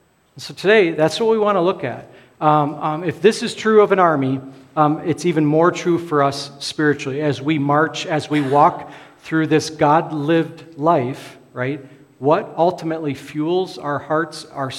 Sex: male